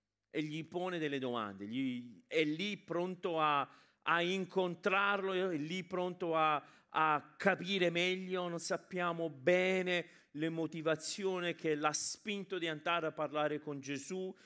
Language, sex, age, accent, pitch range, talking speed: Italian, male, 40-59, native, 125-175 Hz, 125 wpm